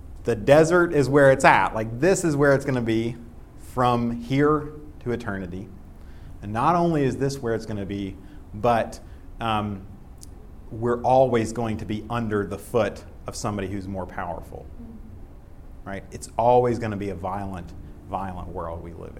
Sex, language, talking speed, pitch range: male, English, 165 wpm, 95-135 Hz